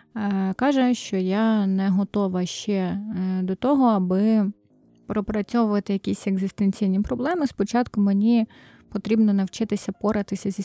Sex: female